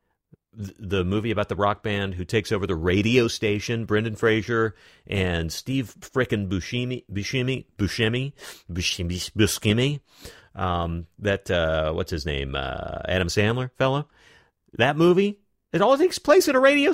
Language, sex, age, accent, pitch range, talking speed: English, male, 40-59, American, 85-115 Hz, 145 wpm